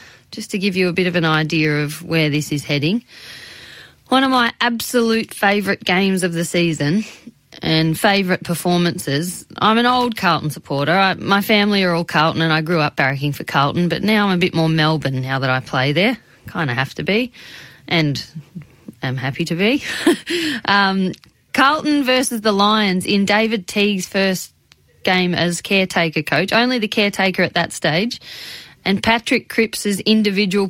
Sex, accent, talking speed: female, Australian, 170 wpm